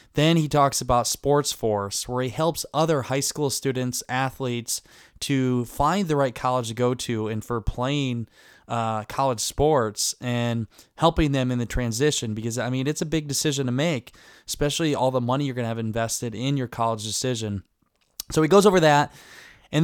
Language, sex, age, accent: English, male, 20-39, American